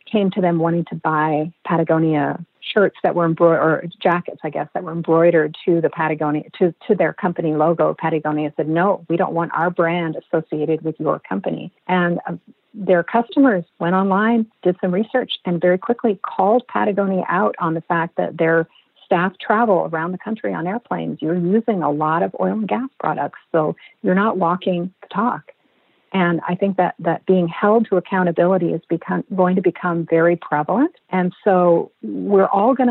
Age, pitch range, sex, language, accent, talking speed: 50-69, 170-200 Hz, female, English, American, 185 wpm